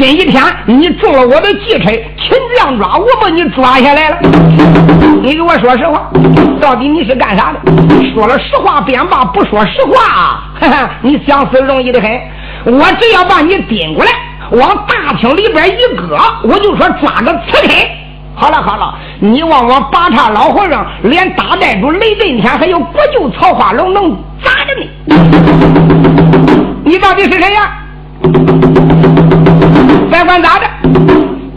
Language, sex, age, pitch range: Chinese, male, 50-69, 255-365 Hz